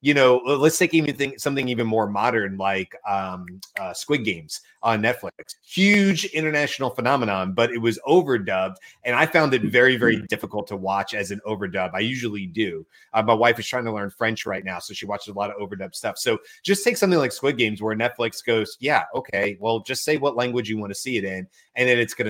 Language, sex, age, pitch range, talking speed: English, male, 30-49, 100-125 Hz, 225 wpm